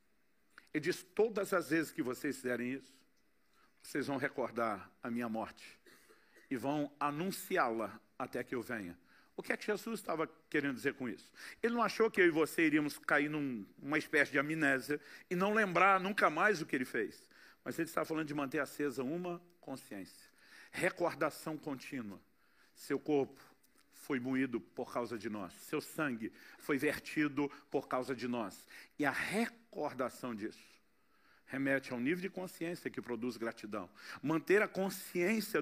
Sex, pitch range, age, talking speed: male, 140-175 Hz, 50-69, 165 wpm